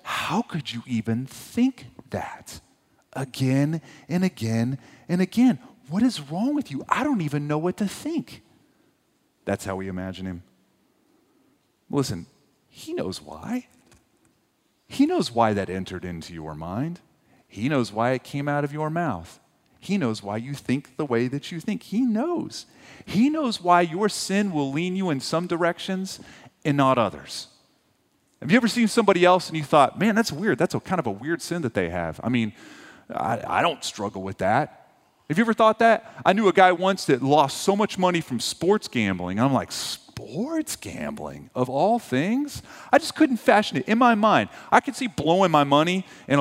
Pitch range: 130-205 Hz